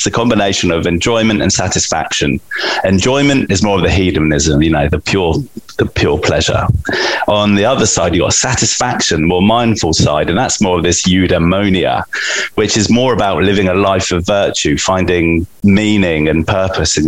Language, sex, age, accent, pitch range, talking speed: English, male, 30-49, British, 90-105 Hz, 175 wpm